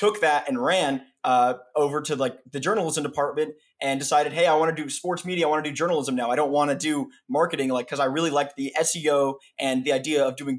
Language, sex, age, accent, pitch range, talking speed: English, male, 20-39, American, 135-170 Hz, 230 wpm